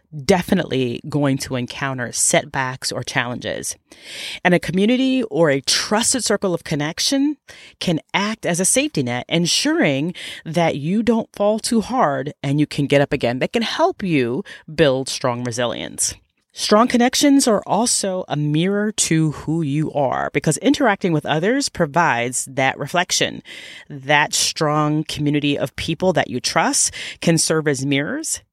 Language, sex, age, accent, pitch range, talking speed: English, female, 30-49, American, 135-210 Hz, 150 wpm